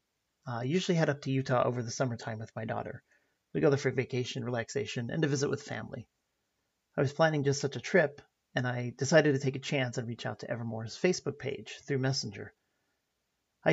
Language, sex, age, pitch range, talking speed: English, male, 40-59, 120-145 Hz, 205 wpm